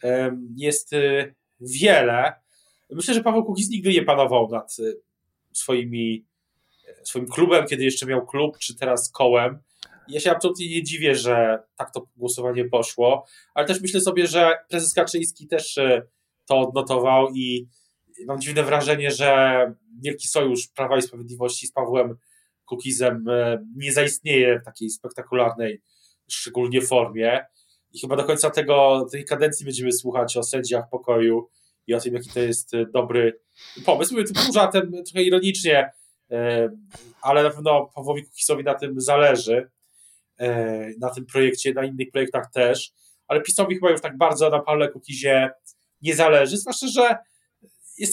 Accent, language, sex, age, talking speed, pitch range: native, Polish, male, 20-39, 140 wpm, 125-160 Hz